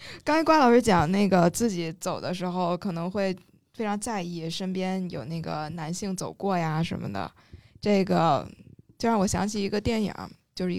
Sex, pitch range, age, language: female, 170-205 Hz, 10-29, Chinese